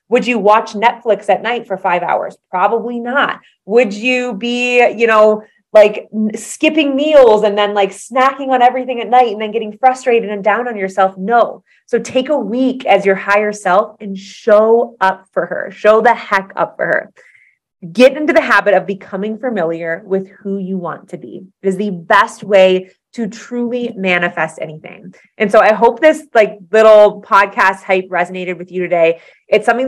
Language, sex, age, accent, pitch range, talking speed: English, female, 30-49, American, 190-235 Hz, 185 wpm